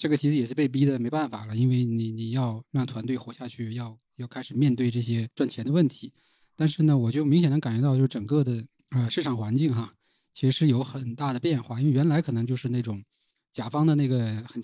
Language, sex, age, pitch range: Chinese, male, 20-39, 120-145 Hz